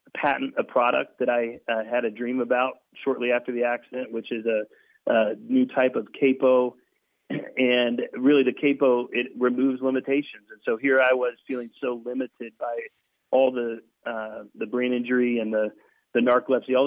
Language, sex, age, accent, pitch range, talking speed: English, male, 40-59, American, 120-130 Hz, 175 wpm